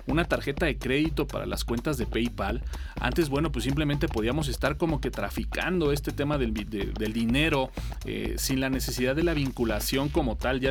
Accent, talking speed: Mexican, 190 wpm